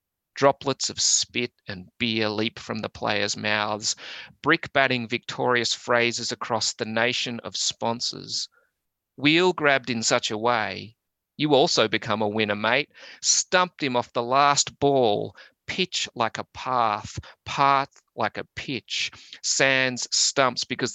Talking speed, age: 135 wpm, 30-49